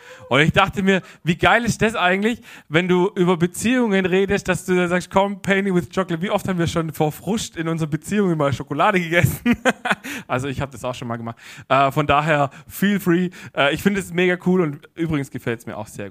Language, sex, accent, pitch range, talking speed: German, male, German, 135-185 Hz, 225 wpm